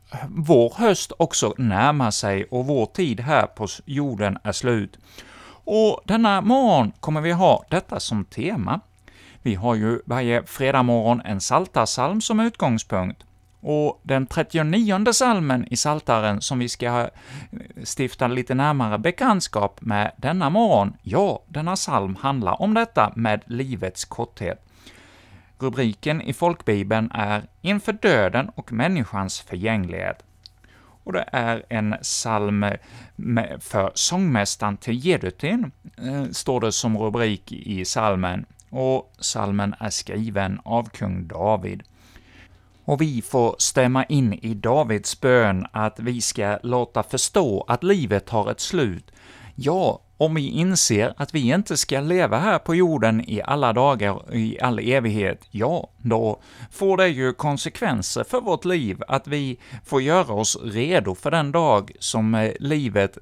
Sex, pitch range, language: male, 105-145 Hz, Swedish